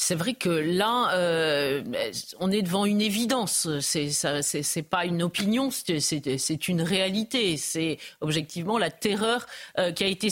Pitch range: 175-225 Hz